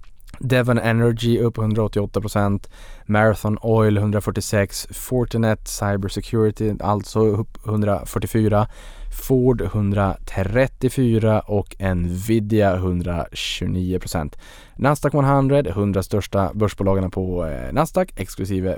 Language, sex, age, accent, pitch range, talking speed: Swedish, male, 20-39, Norwegian, 95-120 Hz, 85 wpm